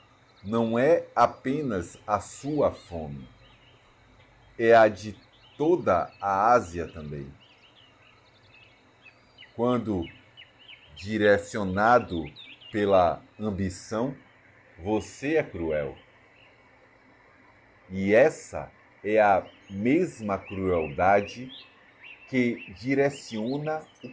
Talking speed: 70 wpm